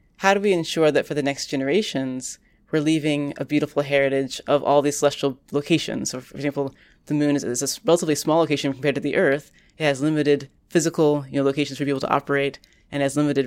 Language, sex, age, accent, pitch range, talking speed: English, female, 20-39, American, 140-155 Hz, 205 wpm